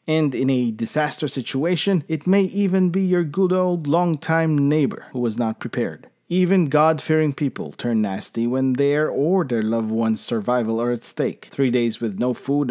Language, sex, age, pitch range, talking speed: English, male, 40-59, 125-170 Hz, 180 wpm